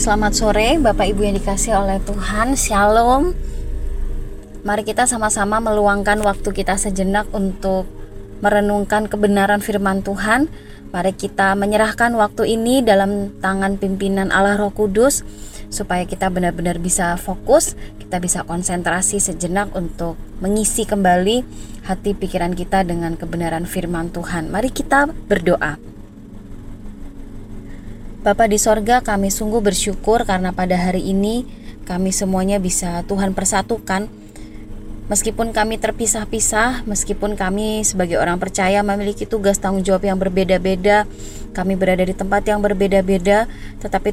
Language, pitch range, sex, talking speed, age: Indonesian, 185-210 Hz, female, 120 wpm, 20-39